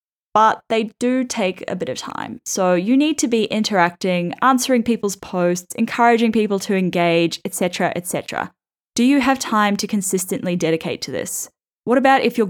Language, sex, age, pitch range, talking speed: English, female, 10-29, 175-235 Hz, 175 wpm